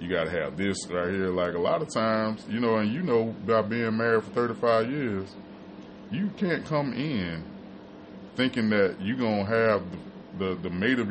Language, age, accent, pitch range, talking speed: English, 20-39, American, 90-105 Hz, 205 wpm